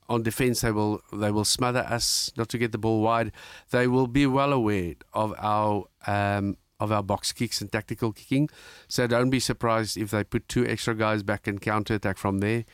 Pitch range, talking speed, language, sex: 105-125 Hz, 210 wpm, English, male